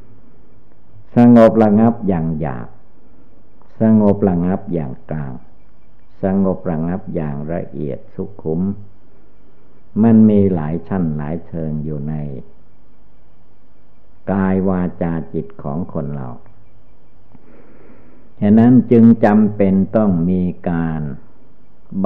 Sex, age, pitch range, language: male, 60-79, 80-105 Hz, Thai